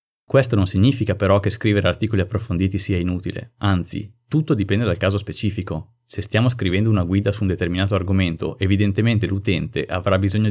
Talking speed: 165 wpm